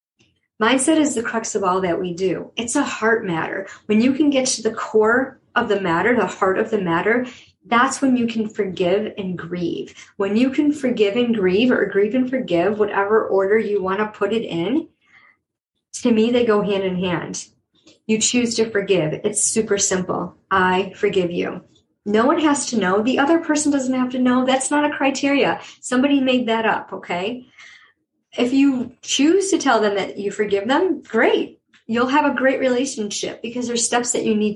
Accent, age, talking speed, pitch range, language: American, 40-59, 195 wpm, 200-250 Hz, English